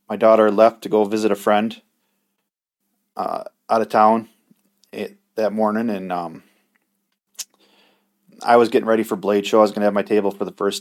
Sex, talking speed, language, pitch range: male, 185 wpm, English, 105-115 Hz